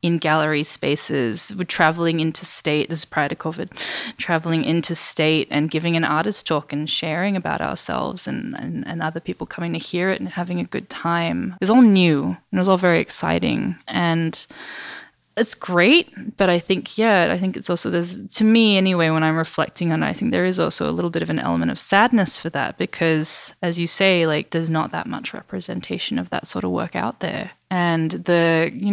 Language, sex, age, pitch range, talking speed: English, female, 20-39, 160-205 Hz, 215 wpm